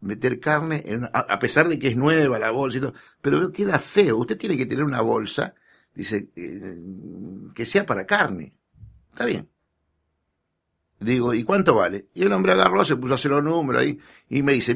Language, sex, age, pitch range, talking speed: Spanish, male, 60-79, 105-155 Hz, 200 wpm